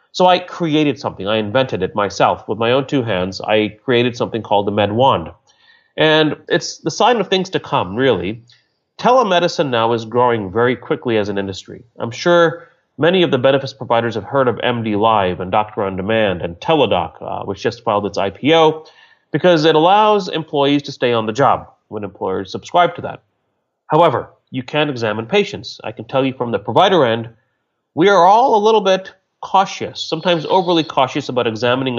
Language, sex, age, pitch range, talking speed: English, male, 30-49, 115-165 Hz, 185 wpm